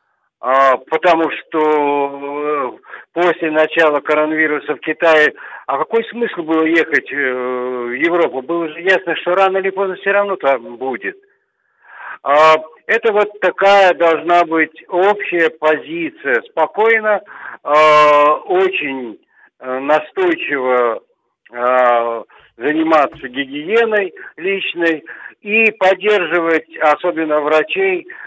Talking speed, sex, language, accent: 90 wpm, male, Russian, native